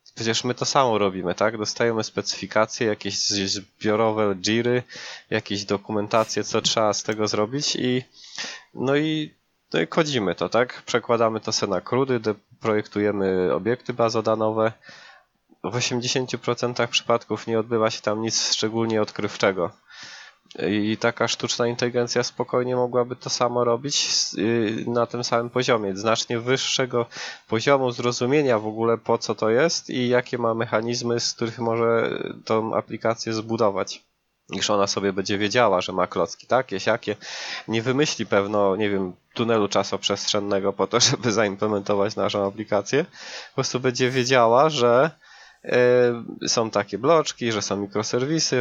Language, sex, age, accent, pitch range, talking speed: Polish, male, 20-39, native, 105-120 Hz, 135 wpm